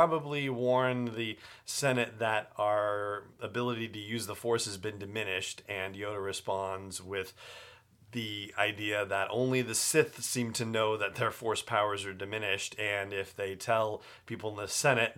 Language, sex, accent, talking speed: English, male, American, 165 wpm